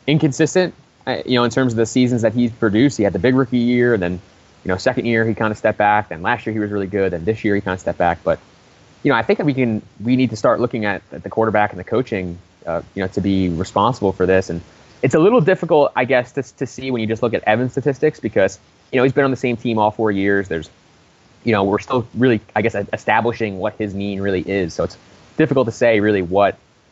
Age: 20-39